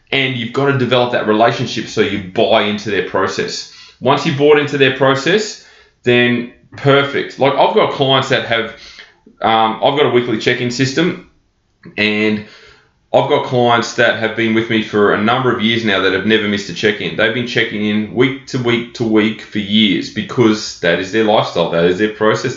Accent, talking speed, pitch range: Australian, 200 wpm, 110-145 Hz